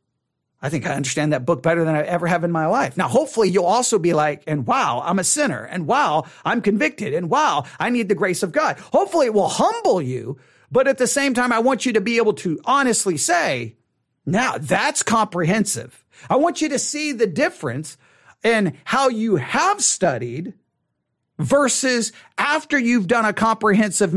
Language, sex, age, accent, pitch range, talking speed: English, male, 50-69, American, 160-255 Hz, 190 wpm